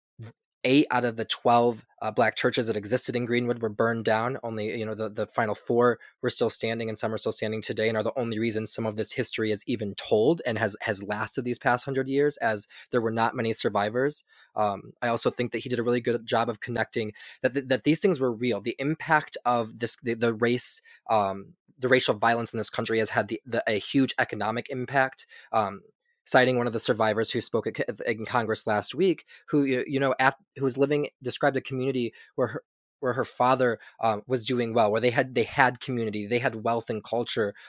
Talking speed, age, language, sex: 225 wpm, 20-39, English, male